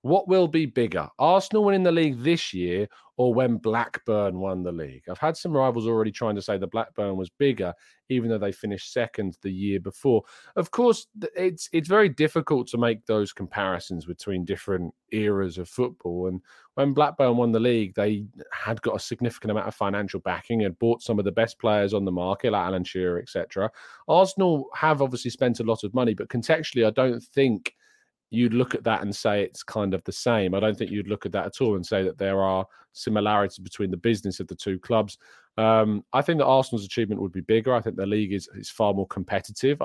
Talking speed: 220 wpm